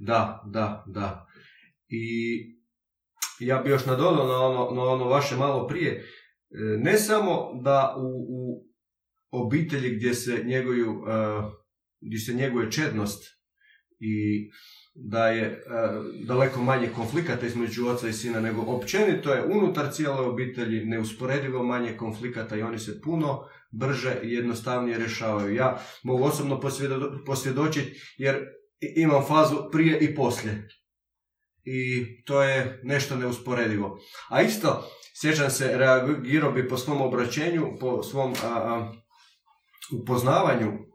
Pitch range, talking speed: 115-140 Hz, 125 wpm